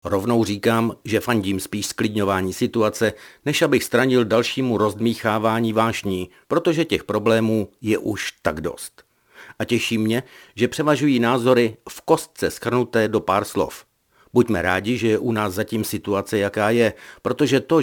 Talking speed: 150 wpm